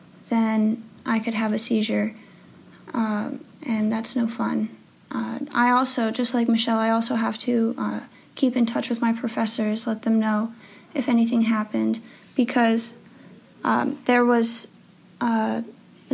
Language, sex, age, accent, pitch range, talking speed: English, female, 20-39, American, 220-240 Hz, 145 wpm